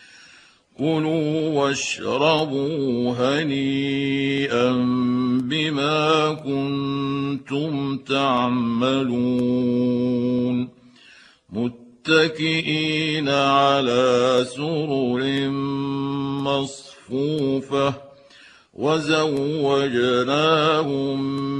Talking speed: 30 wpm